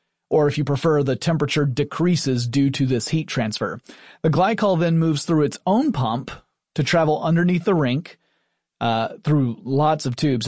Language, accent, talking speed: English, American, 170 wpm